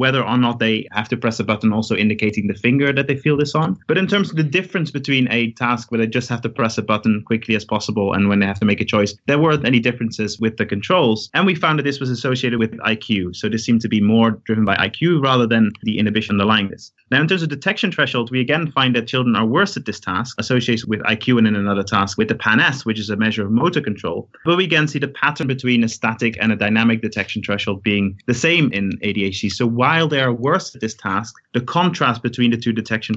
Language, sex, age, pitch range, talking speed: English, male, 20-39, 105-130 Hz, 260 wpm